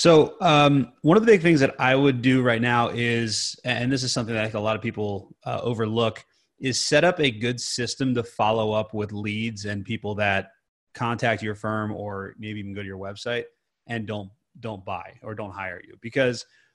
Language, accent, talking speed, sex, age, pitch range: English, American, 215 wpm, male, 30-49, 105-130 Hz